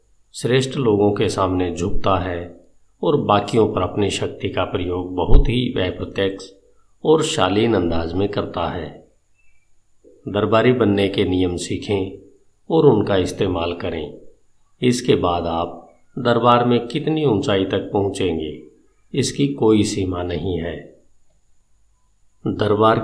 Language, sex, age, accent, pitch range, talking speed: Hindi, male, 50-69, native, 90-115 Hz, 120 wpm